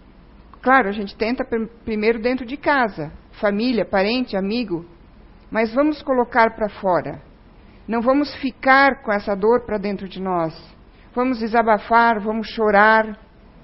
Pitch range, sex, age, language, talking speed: 210-255 Hz, female, 50-69, Portuguese, 130 wpm